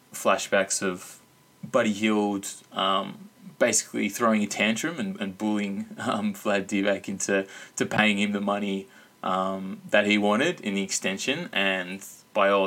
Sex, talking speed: male, 145 wpm